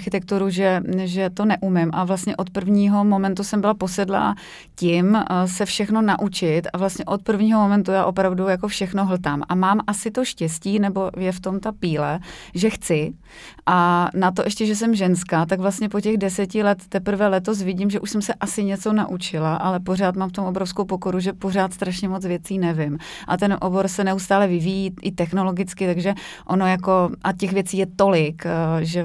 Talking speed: 190 wpm